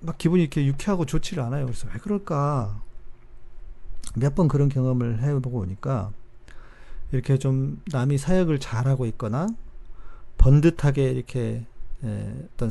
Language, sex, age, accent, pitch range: Korean, male, 40-59, native, 120-165 Hz